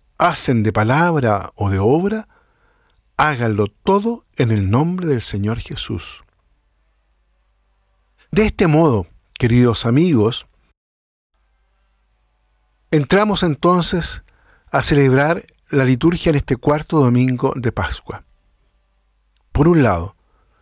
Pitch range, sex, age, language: 100-155 Hz, male, 50-69, Spanish